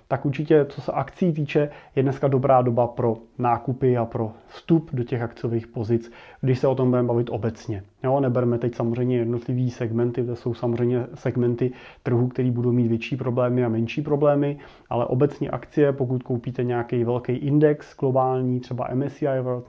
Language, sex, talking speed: Czech, male, 175 wpm